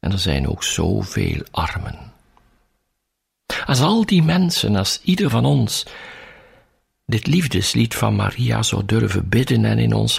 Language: Dutch